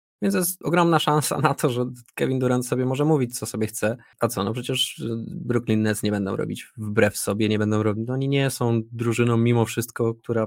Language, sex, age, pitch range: Polish, male, 20-39, 105-130 Hz